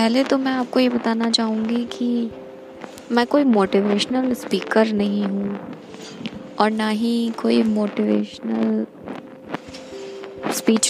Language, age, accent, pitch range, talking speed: Hindi, 20-39, native, 185-250 Hz, 110 wpm